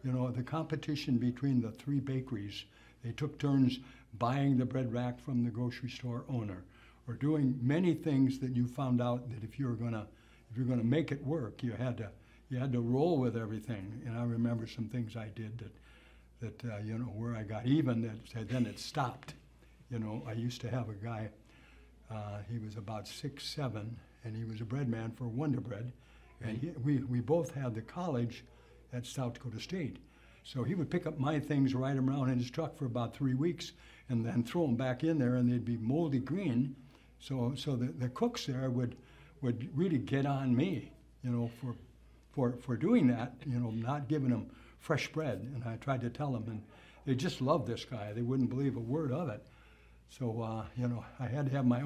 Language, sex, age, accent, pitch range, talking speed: English, male, 60-79, American, 115-135 Hz, 215 wpm